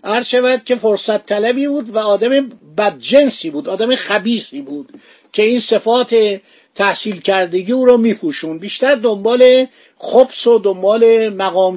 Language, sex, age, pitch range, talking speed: Persian, male, 50-69, 190-245 Hz, 140 wpm